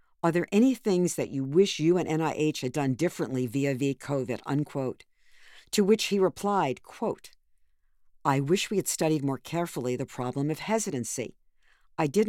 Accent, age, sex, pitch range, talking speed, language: American, 50-69, female, 135-180 Hz, 170 wpm, English